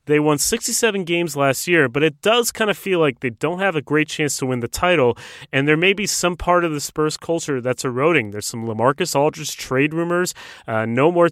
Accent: American